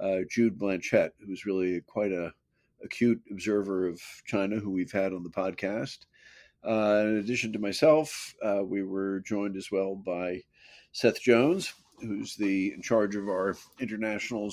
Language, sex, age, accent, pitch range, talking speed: English, male, 50-69, American, 100-125 Hz, 155 wpm